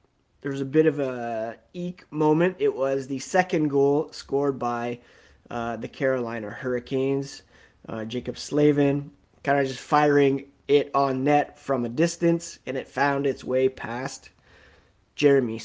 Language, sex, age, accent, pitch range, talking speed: English, male, 20-39, American, 125-150 Hz, 150 wpm